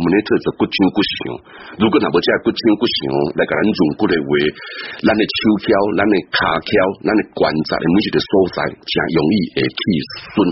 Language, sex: Chinese, male